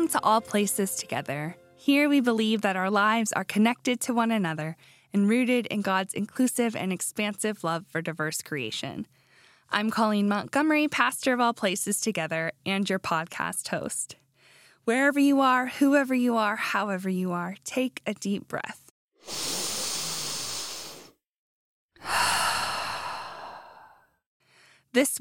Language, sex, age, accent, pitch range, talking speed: English, female, 10-29, American, 205-260 Hz, 125 wpm